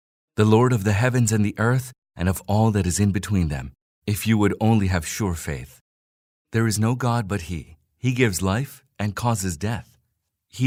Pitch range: 90-115 Hz